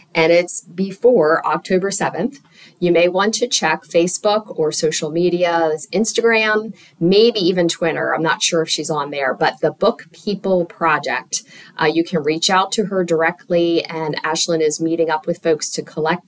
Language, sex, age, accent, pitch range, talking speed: English, female, 40-59, American, 160-205 Hz, 175 wpm